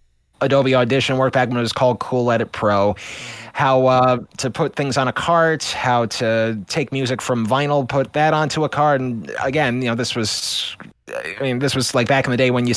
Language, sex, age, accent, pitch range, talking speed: English, male, 20-39, American, 125-170 Hz, 215 wpm